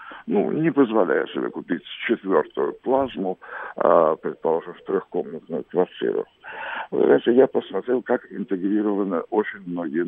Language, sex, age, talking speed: Russian, male, 60-79, 105 wpm